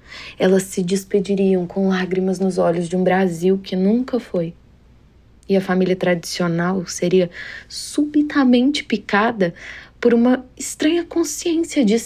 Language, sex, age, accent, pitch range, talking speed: Portuguese, female, 20-39, Brazilian, 175-230 Hz, 125 wpm